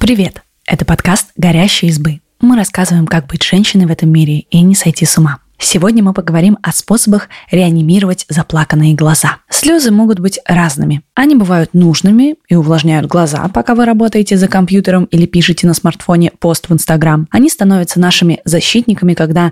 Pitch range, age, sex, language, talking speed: 165-205 Hz, 20-39, female, Russian, 165 wpm